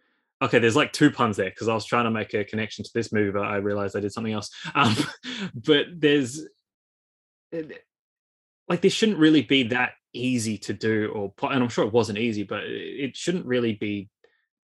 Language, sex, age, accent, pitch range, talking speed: English, male, 20-39, Australian, 105-130 Hz, 195 wpm